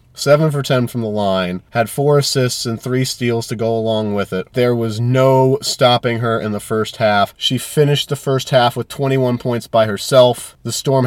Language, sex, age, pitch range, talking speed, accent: English, male, 30-49, 115-135 Hz, 205 wpm, American